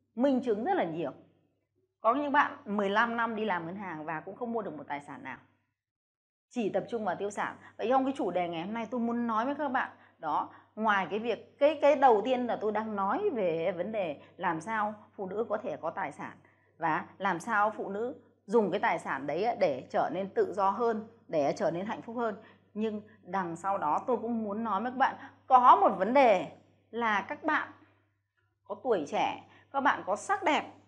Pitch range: 200-275 Hz